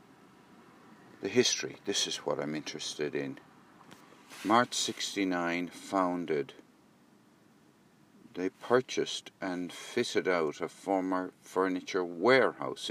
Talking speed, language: 95 wpm, English